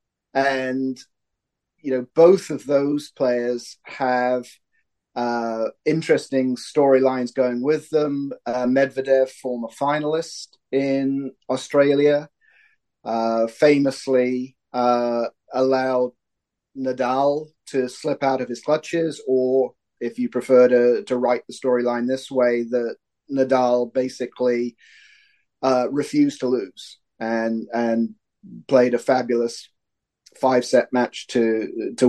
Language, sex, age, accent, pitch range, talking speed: English, male, 30-49, British, 125-140 Hz, 110 wpm